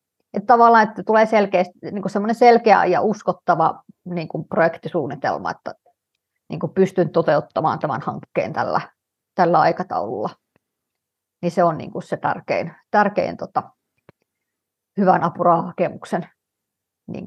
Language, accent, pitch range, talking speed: Finnish, native, 175-210 Hz, 120 wpm